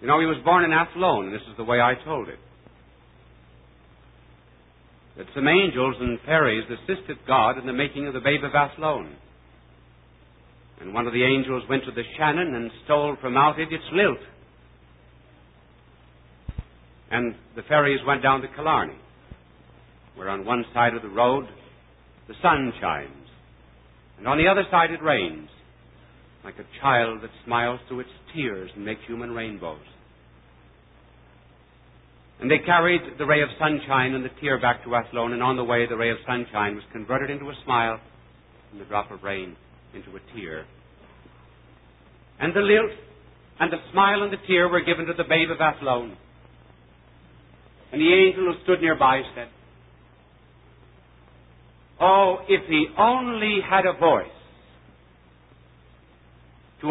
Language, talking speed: English, 155 wpm